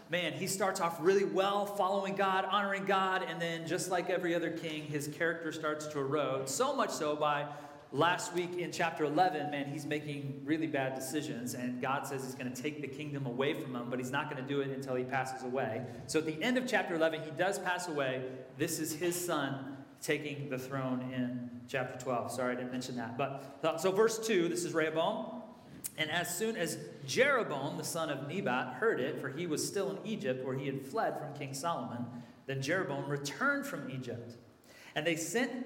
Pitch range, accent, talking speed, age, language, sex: 135-190 Hz, American, 210 wpm, 30-49, English, male